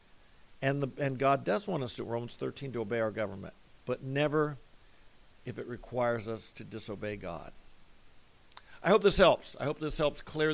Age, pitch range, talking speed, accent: 50-69, 120-155 Hz, 180 wpm, American